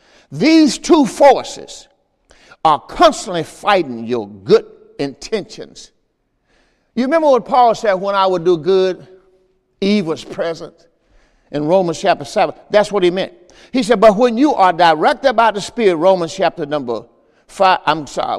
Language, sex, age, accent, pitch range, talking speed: English, male, 60-79, American, 175-270 Hz, 145 wpm